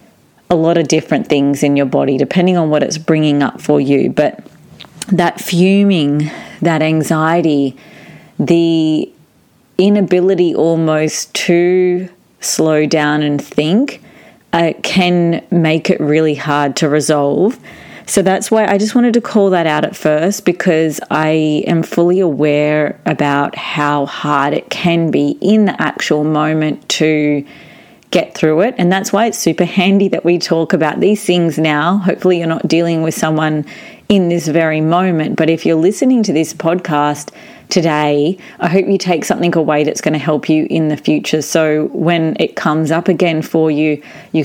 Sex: female